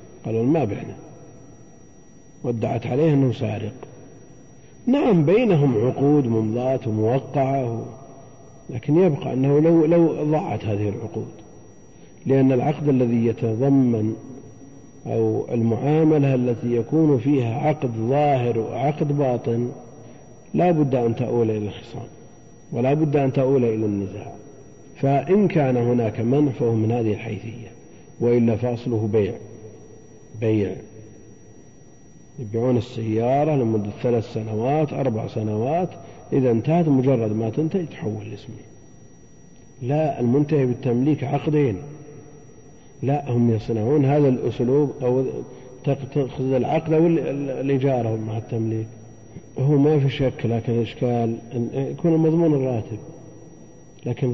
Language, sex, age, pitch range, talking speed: Arabic, male, 50-69, 115-140 Hz, 105 wpm